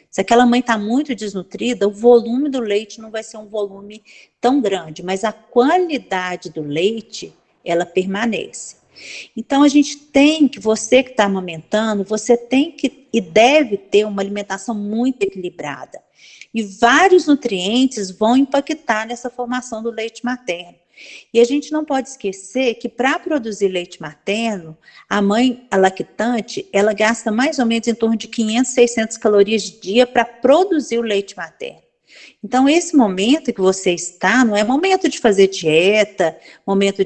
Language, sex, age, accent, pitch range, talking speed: Portuguese, female, 50-69, Brazilian, 200-260 Hz, 160 wpm